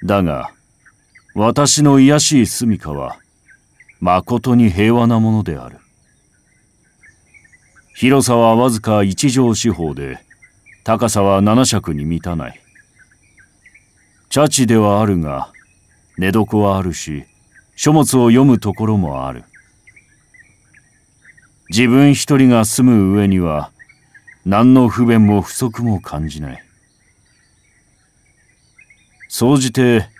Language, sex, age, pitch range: Japanese, male, 40-59, 95-125 Hz